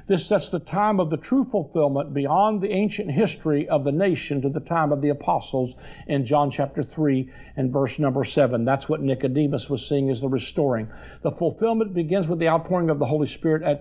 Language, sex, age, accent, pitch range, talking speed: English, male, 50-69, American, 140-170 Hz, 210 wpm